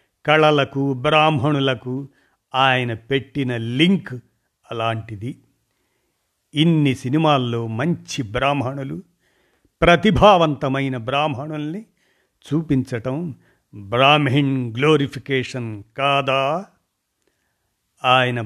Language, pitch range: Telugu, 125-155 Hz